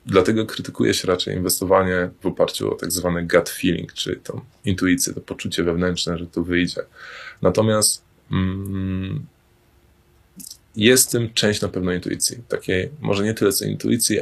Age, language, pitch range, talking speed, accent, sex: 20-39, Polish, 95-105 Hz, 150 wpm, native, male